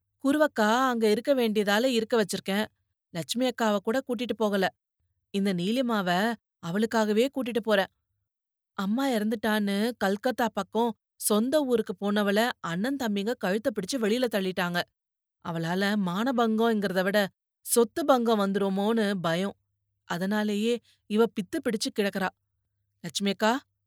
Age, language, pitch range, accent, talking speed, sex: 30-49, Tamil, 190-245 Hz, native, 100 wpm, female